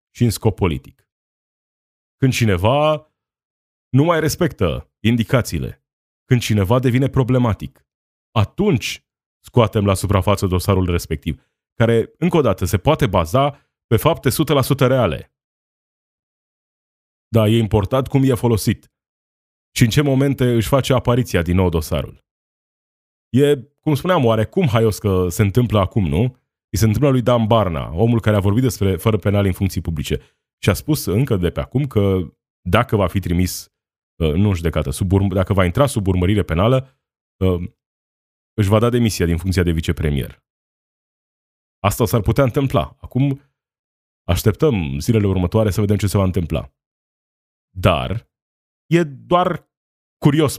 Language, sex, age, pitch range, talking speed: Romanian, male, 30-49, 90-130 Hz, 145 wpm